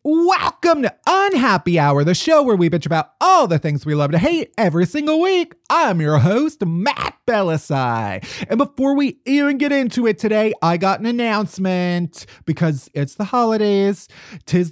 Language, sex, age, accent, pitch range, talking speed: English, male, 30-49, American, 160-225 Hz, 170 wpm